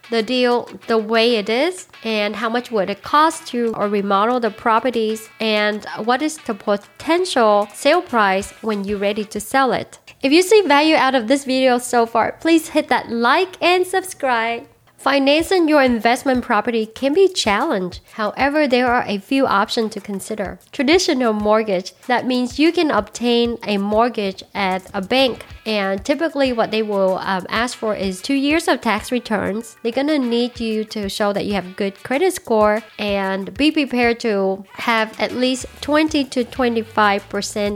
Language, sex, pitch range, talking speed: English, female, 210-265 Hz, 170 wpm